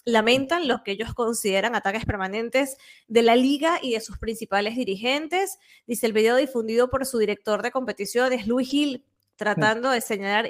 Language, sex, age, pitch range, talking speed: Spanish, female, 20-39, 220-275 Hz, 165 wpm